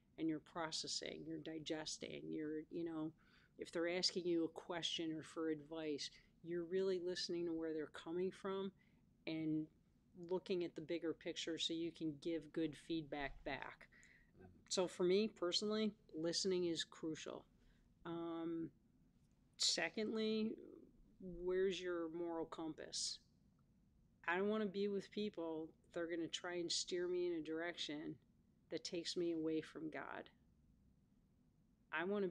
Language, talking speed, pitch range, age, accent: English, 140 wpm, 160-190 Hz, 40-59, American